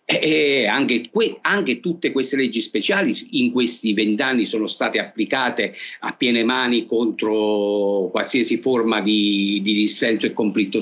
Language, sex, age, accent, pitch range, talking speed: Italian, male, 50-69, native, 105-125 Hz, 140 wpm